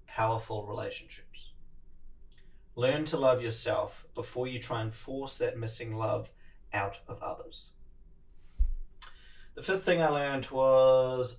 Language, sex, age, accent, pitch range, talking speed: English, male, 20-39, Australian, 105-140 Hz, 120 wpm